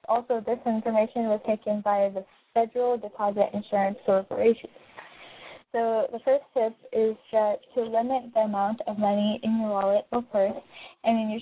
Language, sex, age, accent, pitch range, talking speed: English, female, 10-29, American, 200-225 Hz, 165 wpm